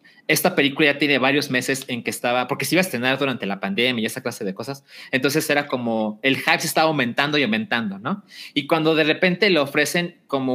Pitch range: 130-175 Hz